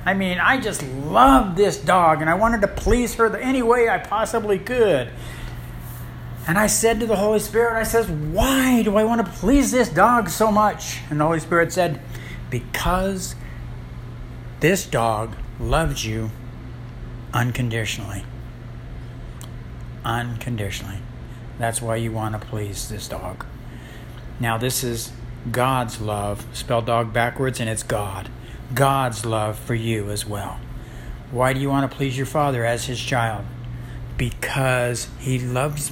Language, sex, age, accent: English, male, 60-79, American